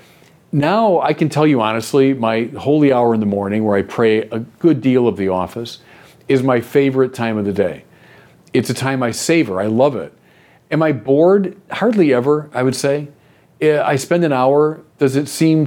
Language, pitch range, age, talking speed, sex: English, 120-170 Hz, 40-59, 195 wpm, male